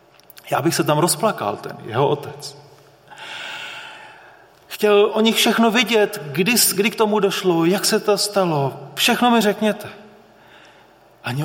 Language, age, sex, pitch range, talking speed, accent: Czech, 40-59, male, 135-200 Hz, 135 wpm, native